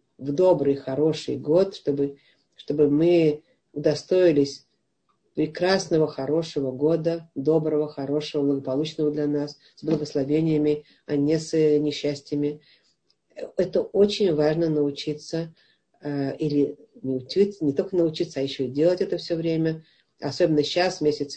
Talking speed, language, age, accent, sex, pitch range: 115 wpm, Russian, 50-69, native, female, 145-170 Hz